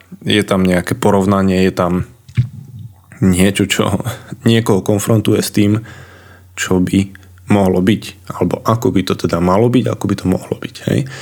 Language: Slovak